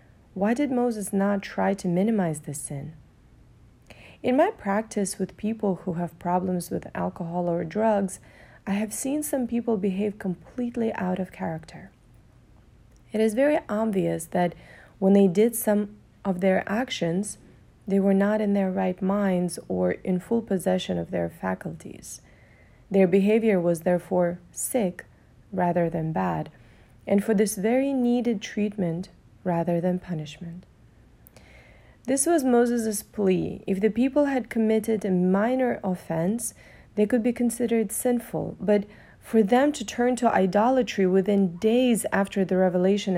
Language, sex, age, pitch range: English, female, 30-49, 175-220 Hz